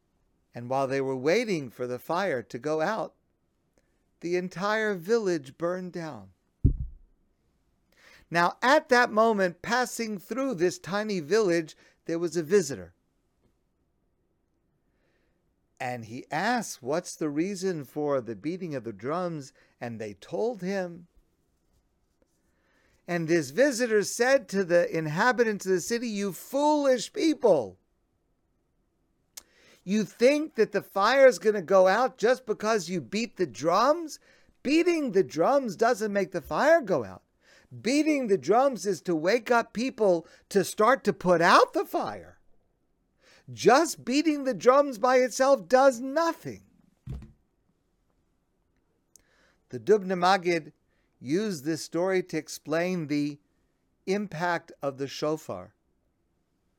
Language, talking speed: English, 125 wpm